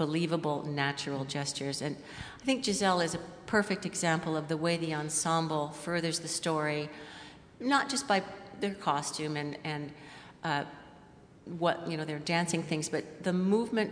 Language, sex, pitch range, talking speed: English, female, 155-195 Hz, 155 wpm